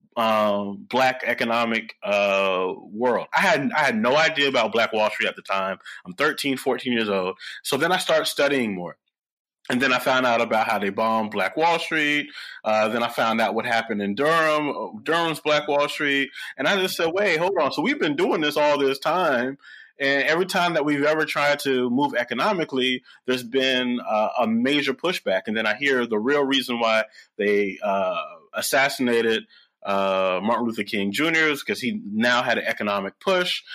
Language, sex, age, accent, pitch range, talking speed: English, male, 30-49, American, 105-145 Hz, 190 wpm